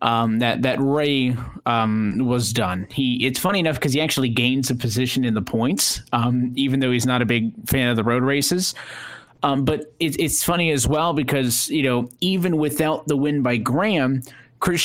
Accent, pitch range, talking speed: American, 125-150 Hz, 195 wpm